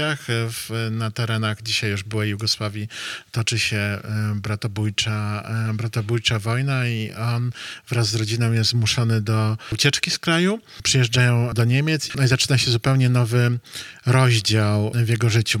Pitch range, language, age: 110-125 Hz, Polish, 40-59